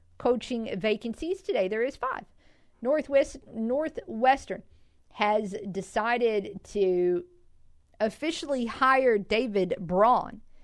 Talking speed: 85 wpm